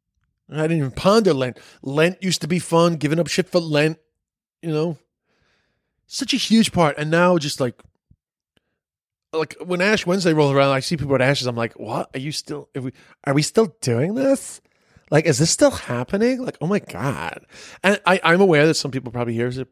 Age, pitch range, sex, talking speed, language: 30-49, 130-170 Hz, male, 205 wpm, English